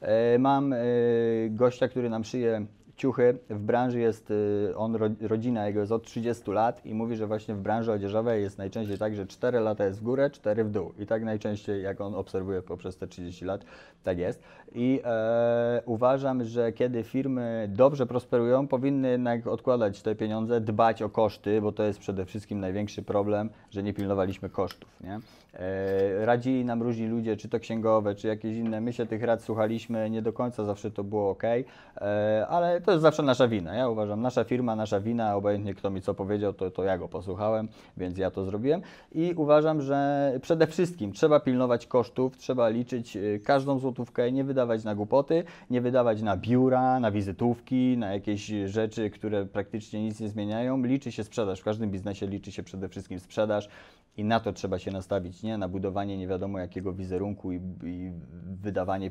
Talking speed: 180 wpm